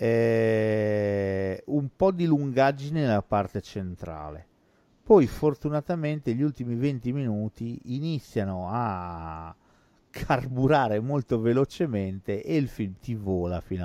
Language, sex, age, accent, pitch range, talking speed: Italian, male, 50-69, native, 95-125 Hz, 105 wpm